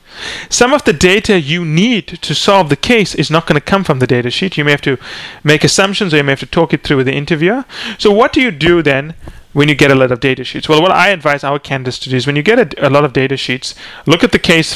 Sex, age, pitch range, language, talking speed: male, 30-49, 135-180 Hz, English, 290 wpm